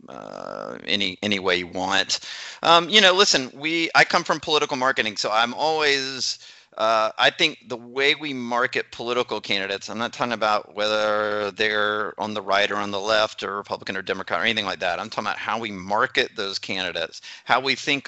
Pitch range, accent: 105-130 Hz, American